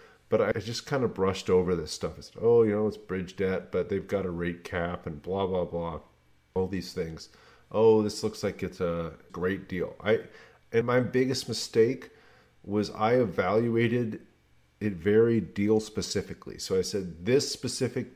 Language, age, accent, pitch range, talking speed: English, 40-59, American, 90-115 Hz, 180 wpm